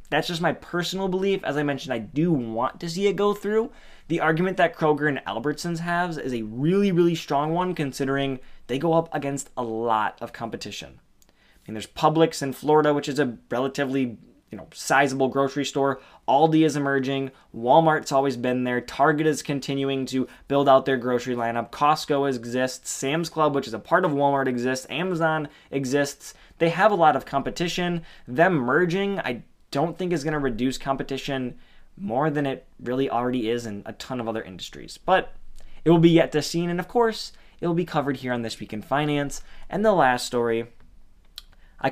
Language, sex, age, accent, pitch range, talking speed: English, male, 20-39, American, 125-160 Hz, 195 wpm